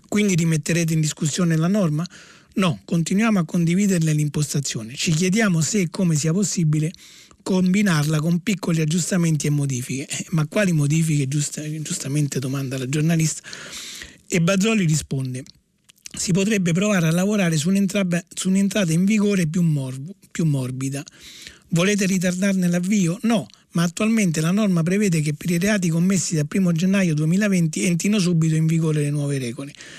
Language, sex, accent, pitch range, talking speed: Italian, male, native, 155-190 Hz, 145 wpm